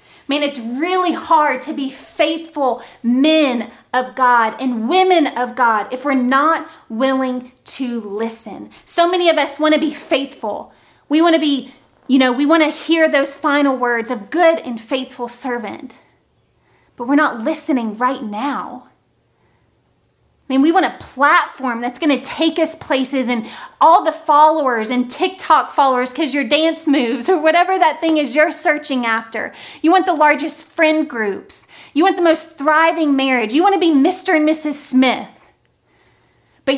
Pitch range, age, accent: 255-325 Hz, 20-39, American